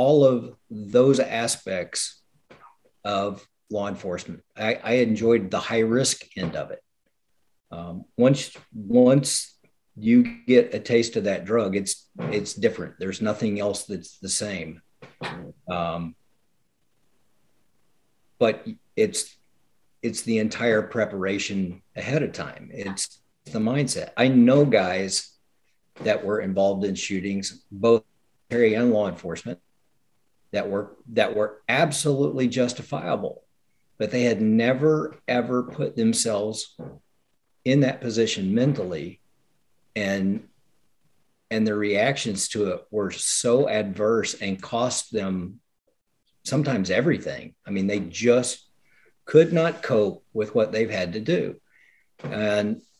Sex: male